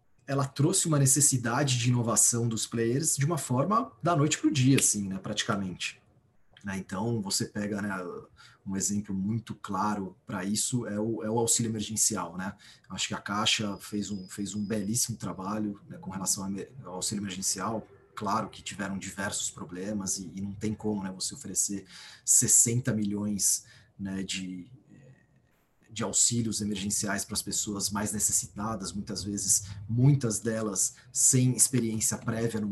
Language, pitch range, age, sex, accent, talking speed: Portuguese, 105-125 Hz, 30-49, male, Brazilian, 150 wpm